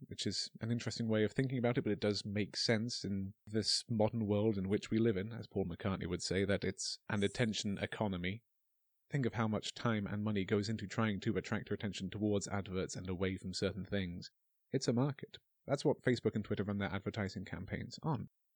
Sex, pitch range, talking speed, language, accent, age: male, 100-115 Hz, 215 wpm, English, British, 30-49